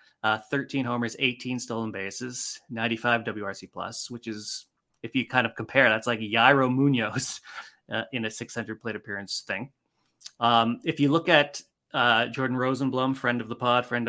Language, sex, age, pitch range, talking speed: English, male, 20-39, 115-140 Hz, 170 wpm